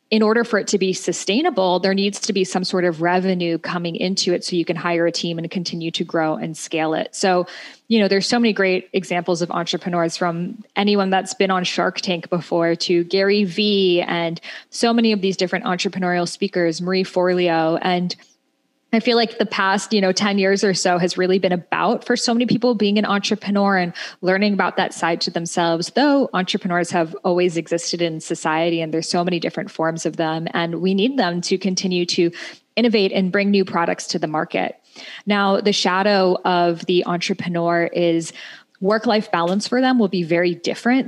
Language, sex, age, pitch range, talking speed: English, female, 10-29, 175-200 Hz, 200 wpm